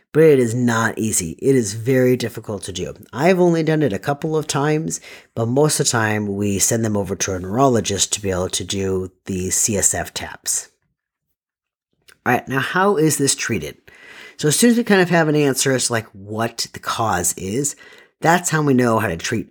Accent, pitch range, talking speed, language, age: American, 105-145 Hz, 210 wpm, English, 40-59